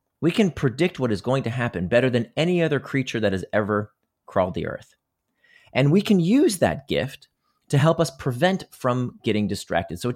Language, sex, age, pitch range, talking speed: English, male, 30-49, 105-150 Hz, 200 wpm